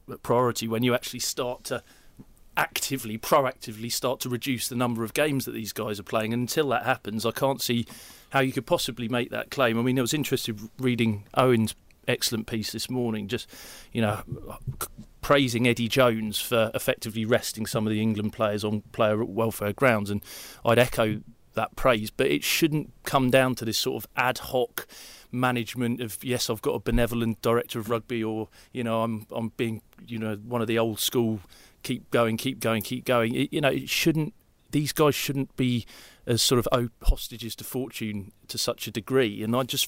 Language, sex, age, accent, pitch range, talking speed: English, male, 30-49, British, 110-125 Hz, 195 wpm